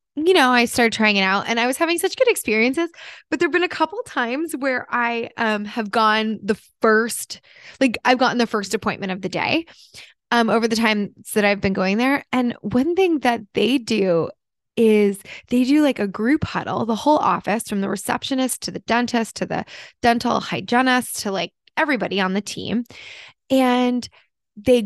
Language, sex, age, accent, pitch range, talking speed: English, female, 20-39, American, 210-270 Hz, 195 wpm